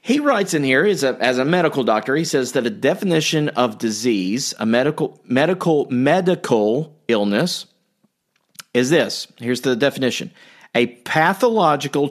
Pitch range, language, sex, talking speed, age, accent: 115-160 Hz, English, male, 145 wpm, 40-59, American